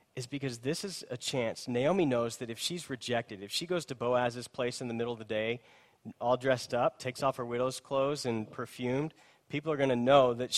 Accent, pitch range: American, 125-155 Hz